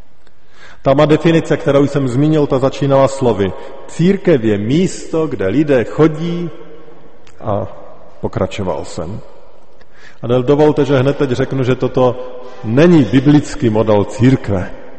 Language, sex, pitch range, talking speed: Slovak, male, 110-140 Hz, 120 wpm